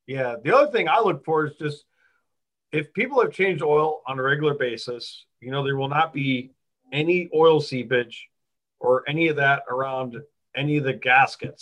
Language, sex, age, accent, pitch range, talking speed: English, male, 40-59, American, 130-155 Hz, 185 wpm